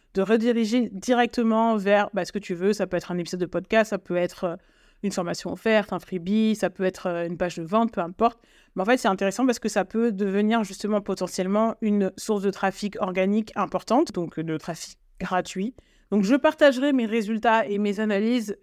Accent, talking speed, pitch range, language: French, 205 wpm, 185-230 Hz, French